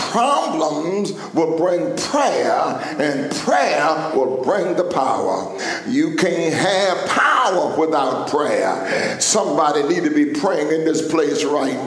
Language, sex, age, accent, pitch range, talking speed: English, male, 60-79, American, 170-215 Hz, 125 wpm